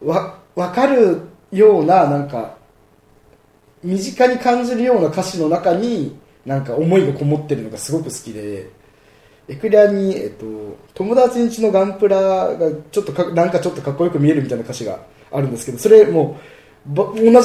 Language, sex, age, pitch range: Japanese, male, 20-39, 125-180 Hz